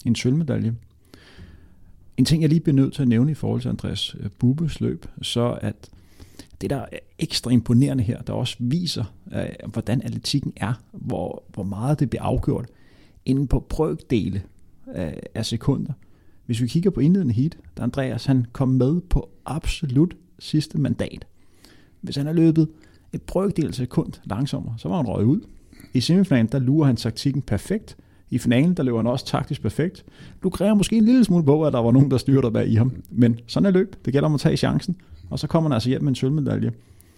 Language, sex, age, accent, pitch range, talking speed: Danish, male, 30-49, native, 110-150 Hz, 190 wpm